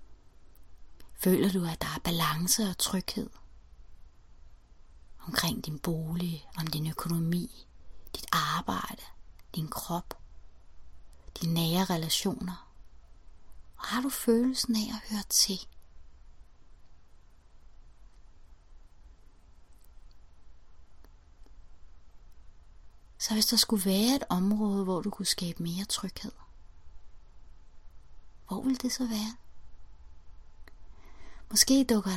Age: 30-49